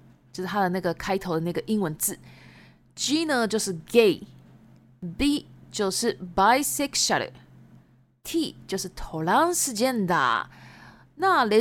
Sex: female